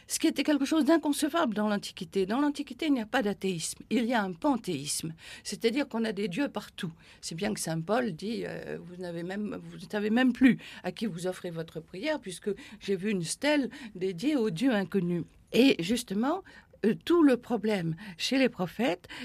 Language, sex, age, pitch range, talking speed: French, female, 50-69, 195-275 Hz, 195 wpm